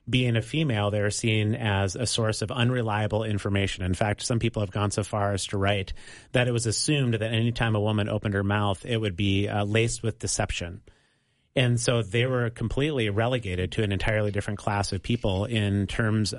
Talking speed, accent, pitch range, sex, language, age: 210 wpm, American, 105-125 Hz, male, English, 30-49